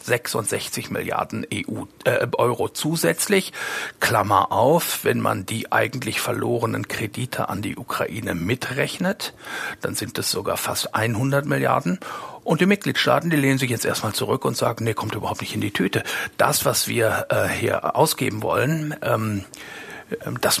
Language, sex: German, male